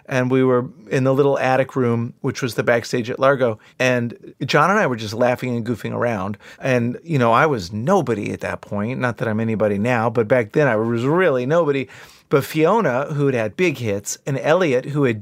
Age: 30-49